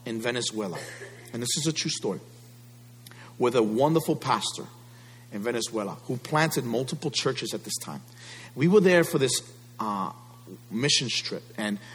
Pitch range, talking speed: 120-200 Hz, 150 wpm